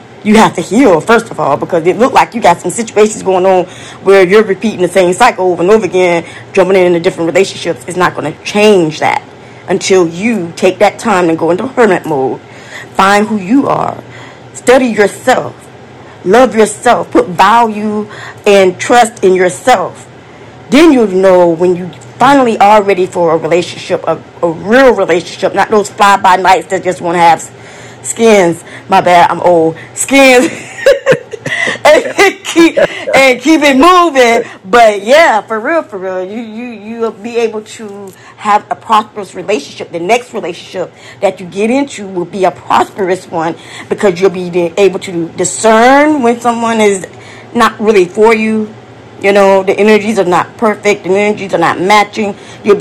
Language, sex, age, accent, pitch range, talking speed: English, female, 20-39, American, 180-225 Hz, 170 wpm